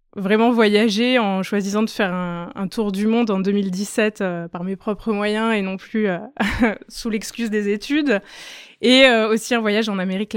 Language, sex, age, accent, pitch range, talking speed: French, female, 20-39, French, 185-220 Hz, 190 wpm